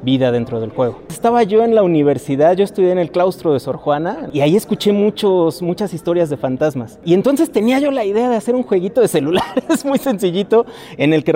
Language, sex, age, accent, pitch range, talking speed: Spanish, male, 30-49, Mexican, 145-205 Hz, 225 wpm